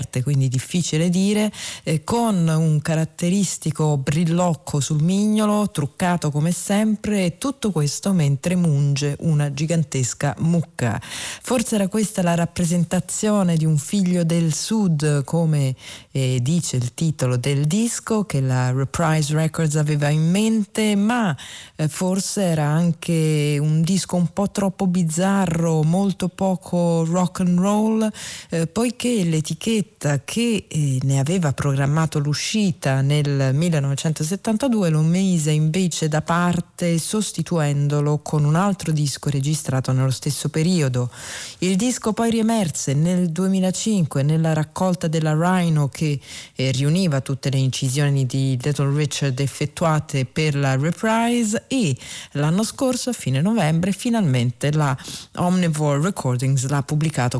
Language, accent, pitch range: Italian, native, 145-185 Hz